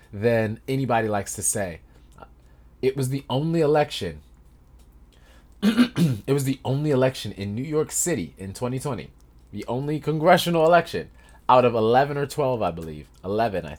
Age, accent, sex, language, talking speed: 20-39, American, male, English, 150 wpm